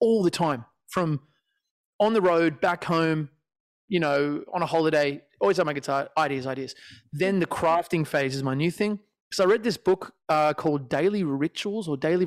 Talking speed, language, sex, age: 190 wpm, English, male, 30-49